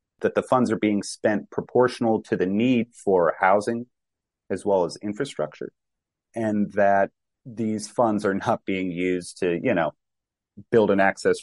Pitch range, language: 90-115 Hz, English